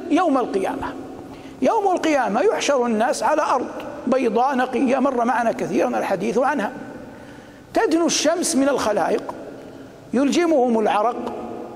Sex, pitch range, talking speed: male, 240-300 Hz, 105 wpm